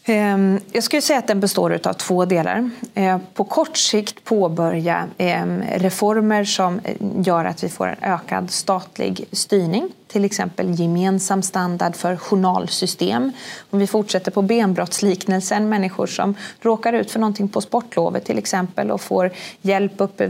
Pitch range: 185-220 Hz